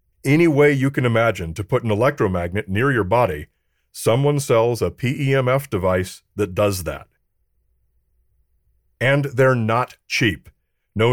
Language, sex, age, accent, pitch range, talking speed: English, male, 40-59, American, 95-140 Hz, 135 wpm